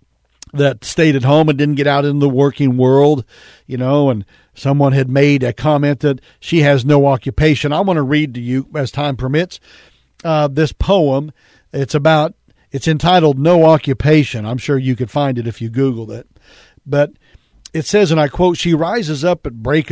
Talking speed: 195 wpm